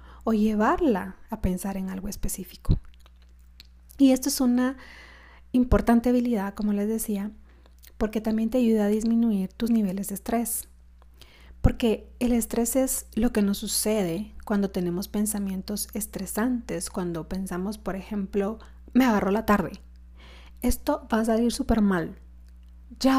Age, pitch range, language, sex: 30-49, 180-230 Hz, Spanish, female